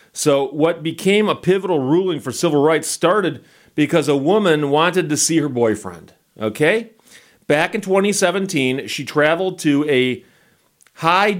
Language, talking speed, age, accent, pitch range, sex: English, 140 wpm, 40-59, American, 145-180 Hz, male